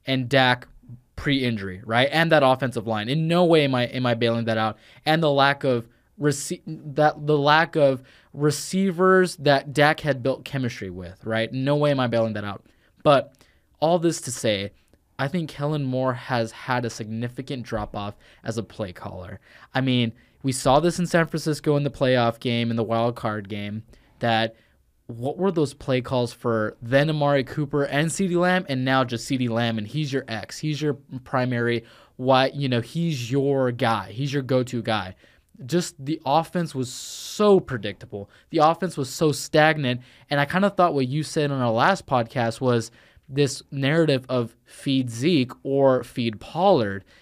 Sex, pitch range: male, 115-150 Hz